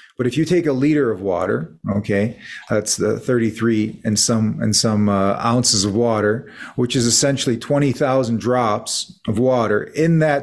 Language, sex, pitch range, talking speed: English, male, 110-140 Hz, 165 wpm